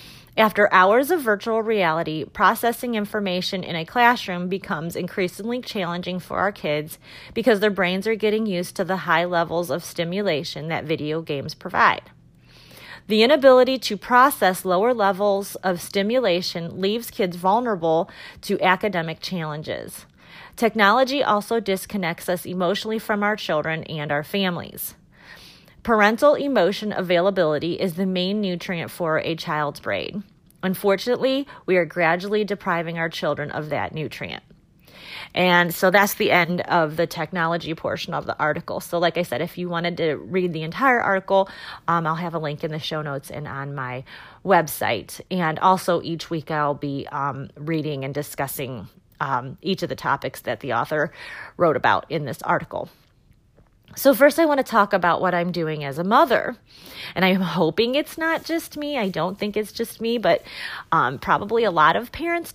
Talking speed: 165 wpm